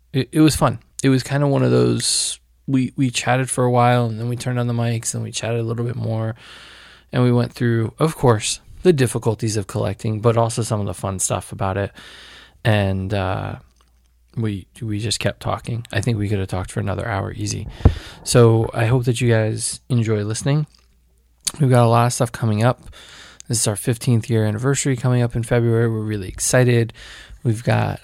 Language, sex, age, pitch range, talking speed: English, male, 20-39, 105-125 Hz, 210 wpm